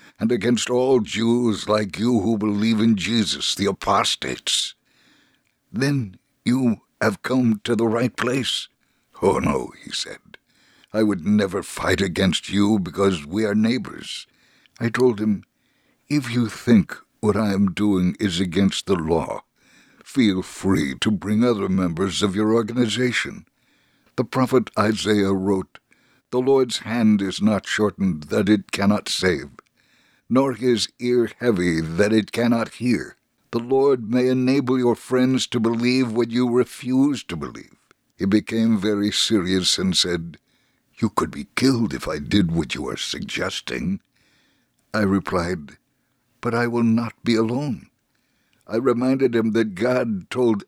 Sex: male